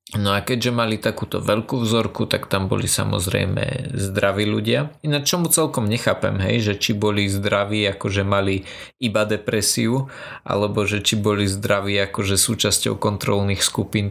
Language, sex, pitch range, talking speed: Slovak, male, 105-130 Hz, 155 wpm